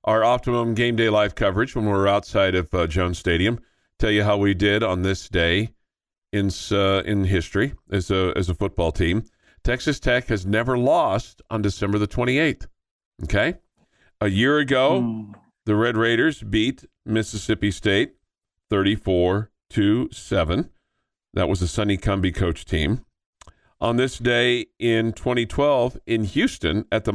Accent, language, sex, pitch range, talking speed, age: American, English, male, 95-120 Hz, 150 wpm, 50-69